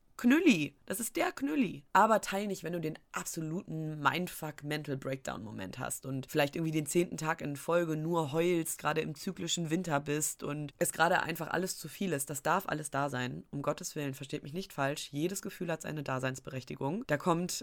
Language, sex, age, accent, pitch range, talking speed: German, female, 20-39, German, 135-165 Hz, 195 wpm